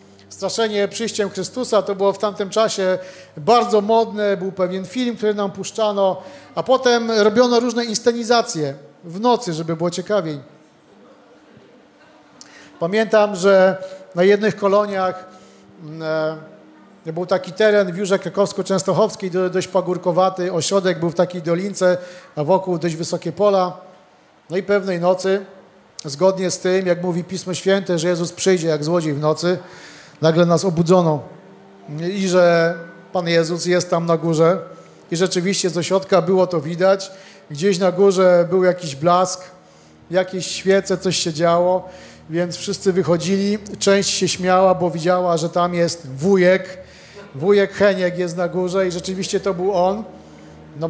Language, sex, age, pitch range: Polish, male, 40-59, 175-200 Hz